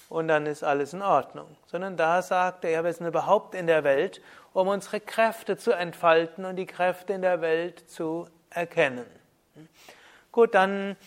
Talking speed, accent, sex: 170 wpm, German, male